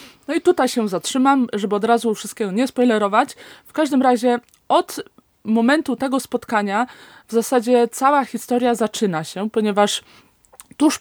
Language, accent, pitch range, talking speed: Polish, native, 210-270 Hz, 140 wpm